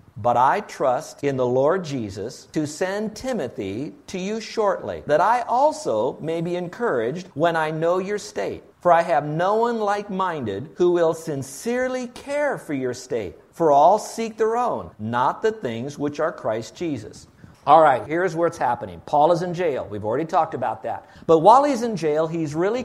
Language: English